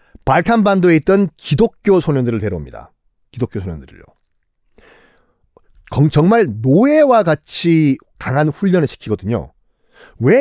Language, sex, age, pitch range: Korean, male, 40-59, 120-195 Hz